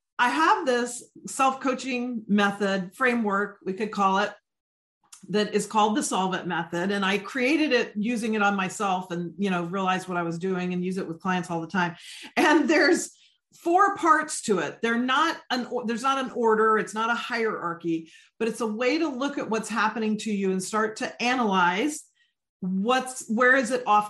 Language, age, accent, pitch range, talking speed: English, 40-59, American, 185-240 Hz, 190 wpm